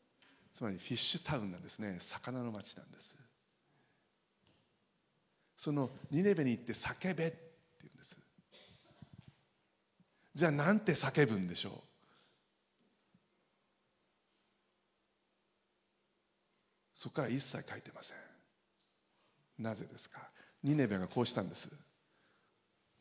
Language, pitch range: Japanese, 115-175 Hz